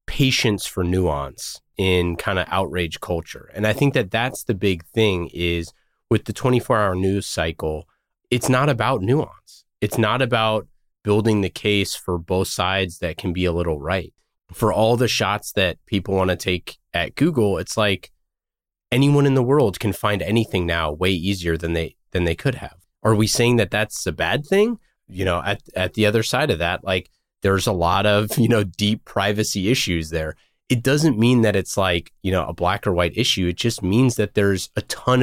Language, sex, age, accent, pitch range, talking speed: English, male, 30-49, American, 90-120 Hz, 200 wpm